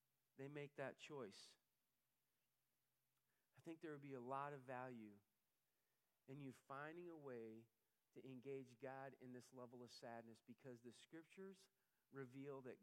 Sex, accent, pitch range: male, American, 130-190 Hz